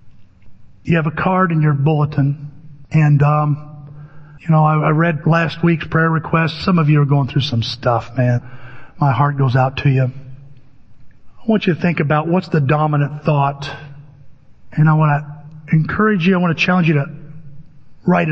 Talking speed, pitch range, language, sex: 185 wpm, 140-165 Hz, English, male